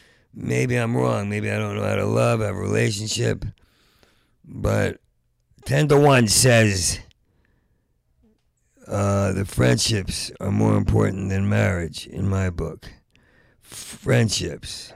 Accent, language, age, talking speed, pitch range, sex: American, English, 50-69, 125 wpm, 90-120 Hz, male